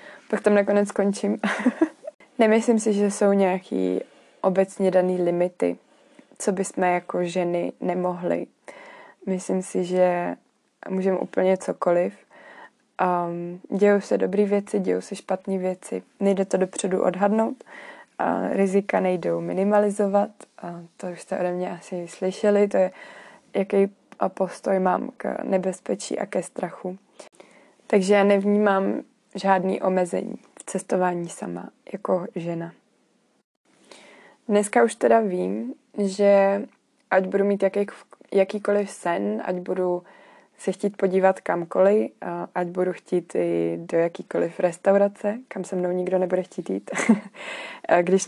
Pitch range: 180-205 Hz